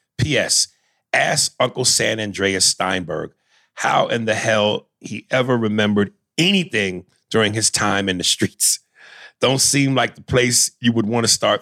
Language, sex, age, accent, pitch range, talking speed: English, male, 40-59, American, 105-130 Hz, 155 wpm